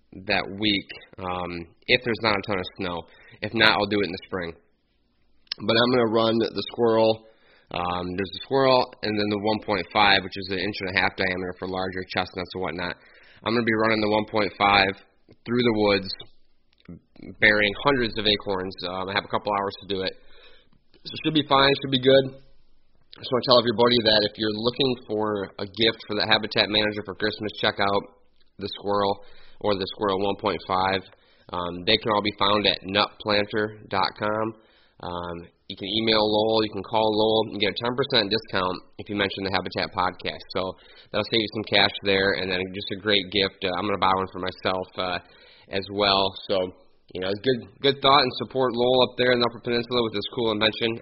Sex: male